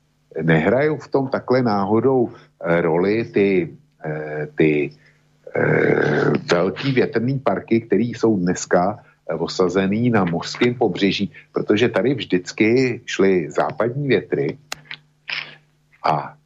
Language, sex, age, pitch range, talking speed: Slovak, male, 50-69, 90-125 Hz, 100 wpm